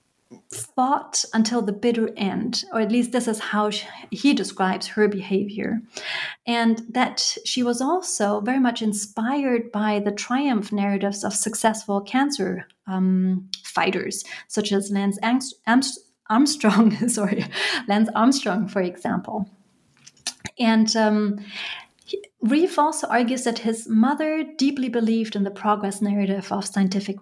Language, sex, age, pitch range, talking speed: English, female, 30-49, 200-245 Hz, 125 wpm